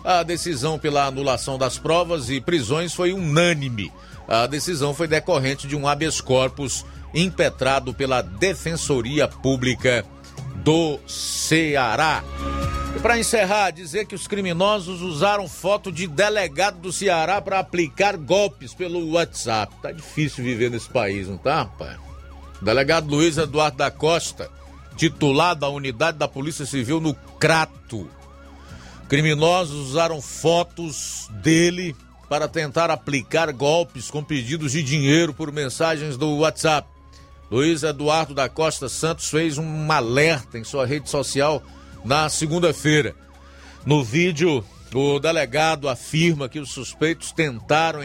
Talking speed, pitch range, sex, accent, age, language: 125 wpm, 130-165 Hz, male, Brazilian, 50-69, Portuguese